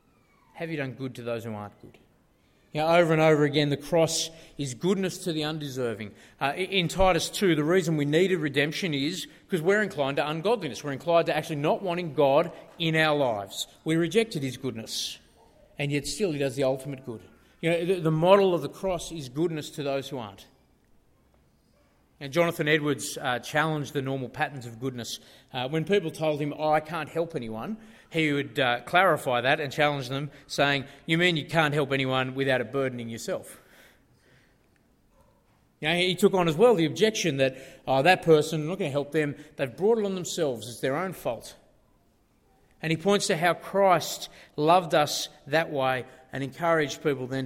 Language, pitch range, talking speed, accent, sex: English, 130-165 Hz, 190 wpm, Australian, male